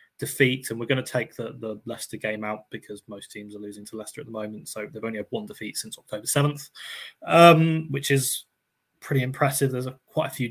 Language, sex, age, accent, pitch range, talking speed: English, male, 20-39, British, 110-140 Hz, 230 wpm